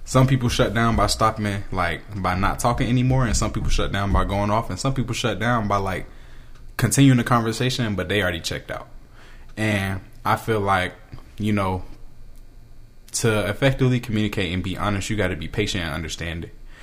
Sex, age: male, 20-39